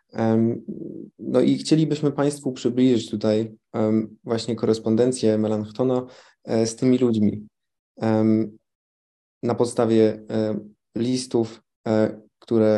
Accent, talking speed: native, 75 wpm